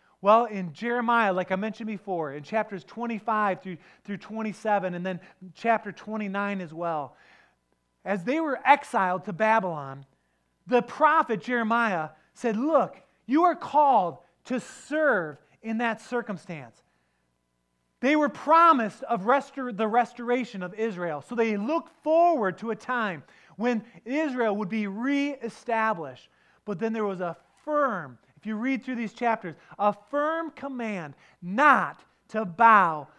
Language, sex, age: English, male, 30-49